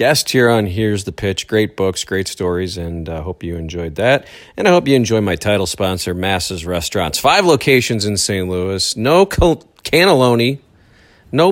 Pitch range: 95-135 Hz